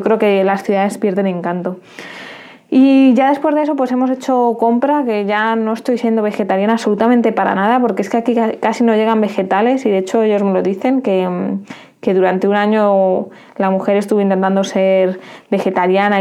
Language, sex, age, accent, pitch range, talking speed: Spanish, female, 20-39, Spanish, 195-225 Hz, 185 wpm